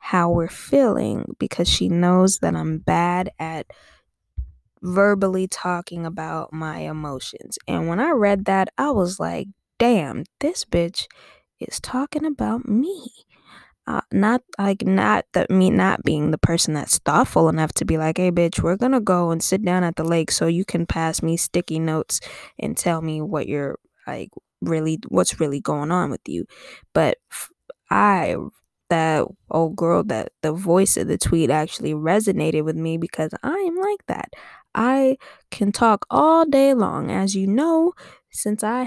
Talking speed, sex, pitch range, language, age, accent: 165 wpm, female, 160-220 Hz, English, 10-29, American